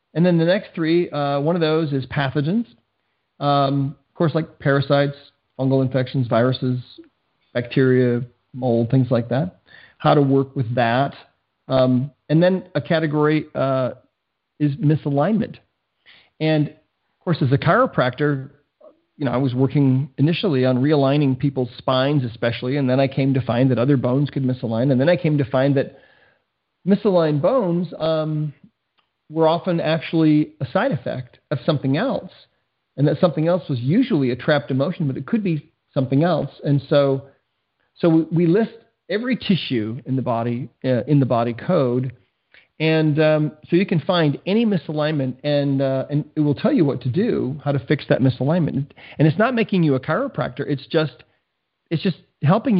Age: 40-59